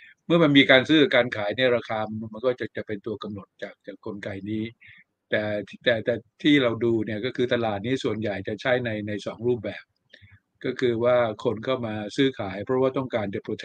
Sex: male